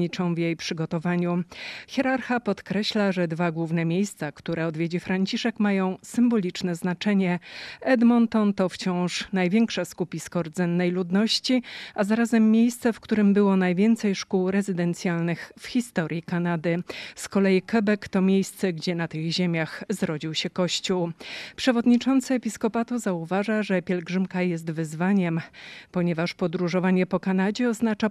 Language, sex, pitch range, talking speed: Polish, female, 175-215 Hz, 125 wpm